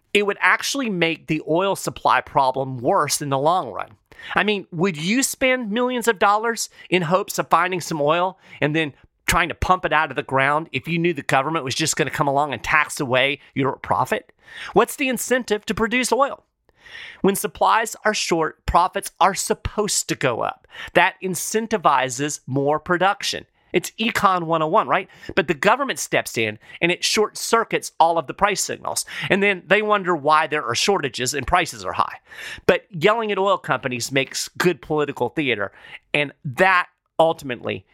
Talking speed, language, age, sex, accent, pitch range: 180 wpm, English, 40-59, male, American, 145-210 Hz